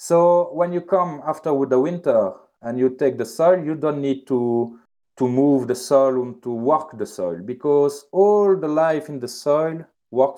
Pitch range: 125-155 Hz